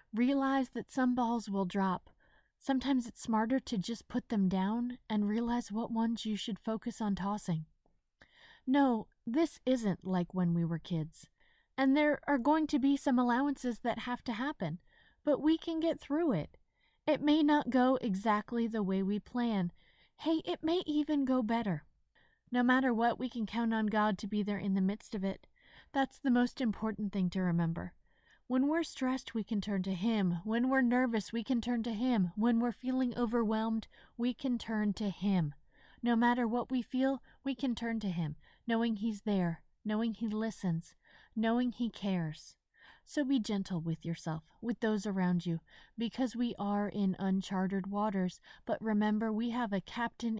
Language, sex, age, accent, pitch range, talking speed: English, female, 30-49, American, 190-250 Hz, 180 wpm